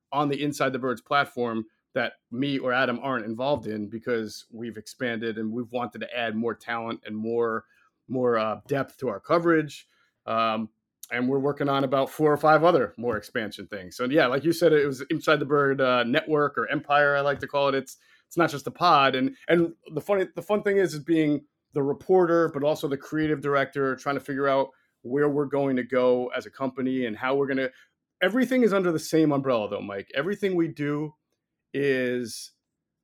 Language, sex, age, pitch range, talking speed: English, male, 30-49, 125-155 Hz, 205 wpm